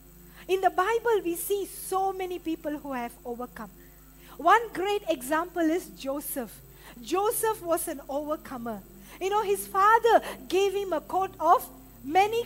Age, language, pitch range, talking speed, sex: 50-69, English, 315-405 Hz, 145 wpm, female